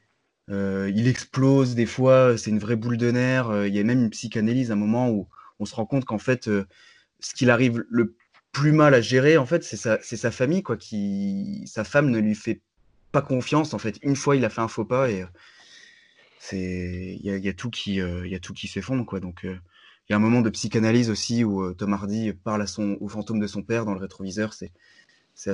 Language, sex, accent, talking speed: French, male, French, 245 wpm